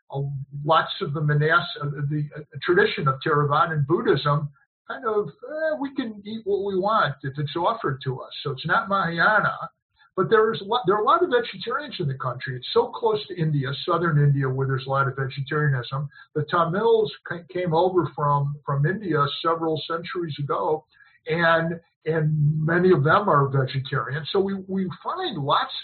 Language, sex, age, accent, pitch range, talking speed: English, male, 50-69, American, 140-175 Hz, 185 wpm